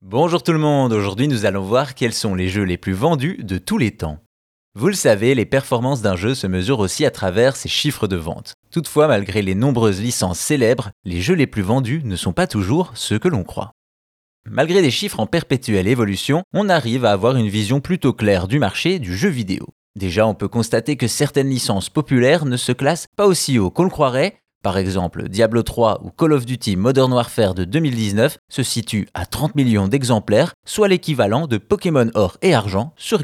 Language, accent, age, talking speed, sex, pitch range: French, French, 20-39, 210 wpm, male, 105-145 Hz